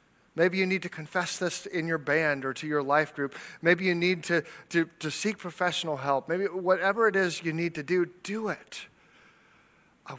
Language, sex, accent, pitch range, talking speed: English, male, American, 150-190 Hz, 195 wpm